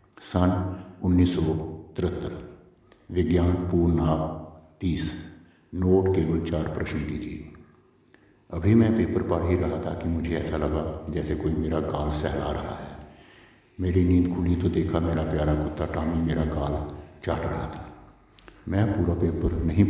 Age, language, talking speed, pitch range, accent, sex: 60-79, Hindi, 140 wpm, 80-90 Hz, native, male